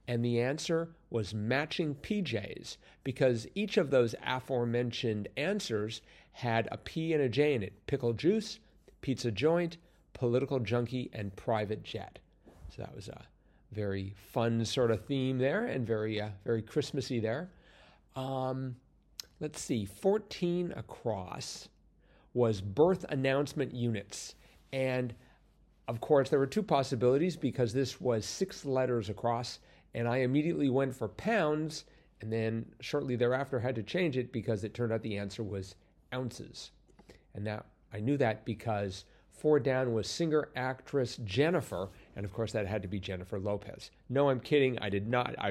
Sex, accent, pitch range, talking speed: male, American, 110-140 Hz, 155 wpm